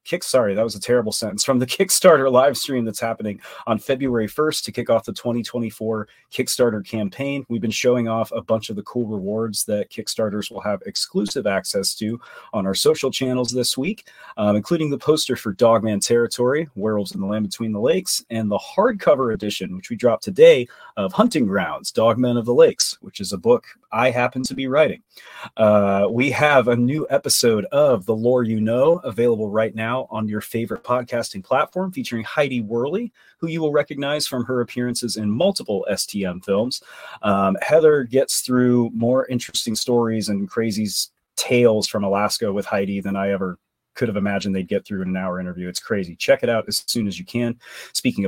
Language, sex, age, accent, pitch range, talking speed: English, male, 30-49, American, 105-130 Hz, 195 wpm